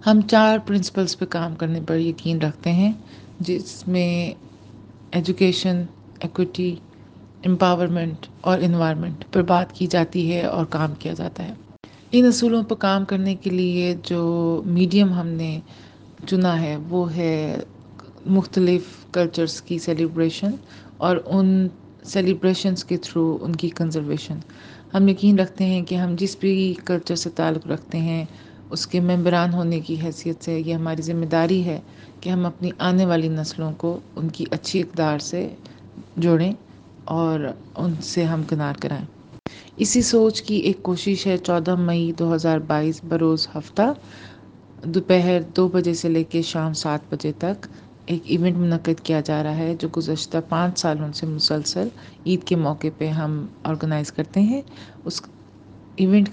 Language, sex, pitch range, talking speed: Urdu, female, 160-185 Hz, 150 wpm